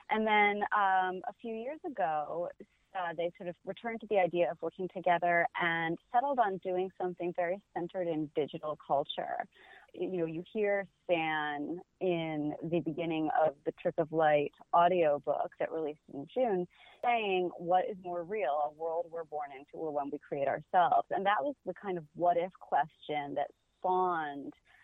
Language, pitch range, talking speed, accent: English, 160-195 Hz, 170 wpm, American